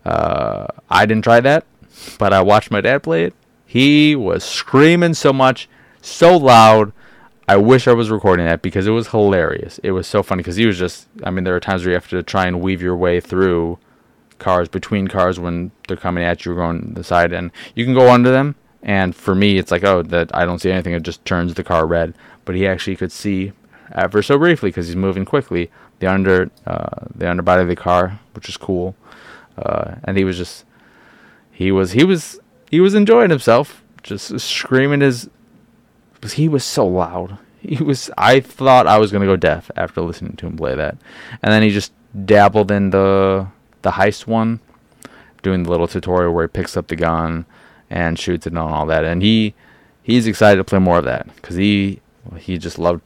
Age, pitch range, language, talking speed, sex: 20-39, 90-110 Hz, English, 210 wpm, male